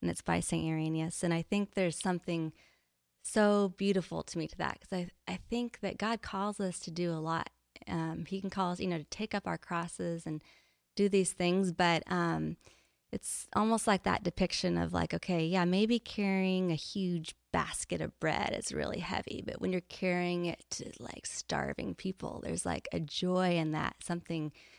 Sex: female